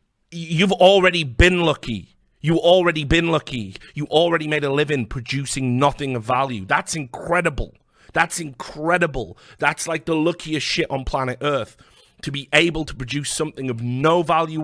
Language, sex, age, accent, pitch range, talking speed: English, male, 30-49, British, 125-160 Hz, 155 wpm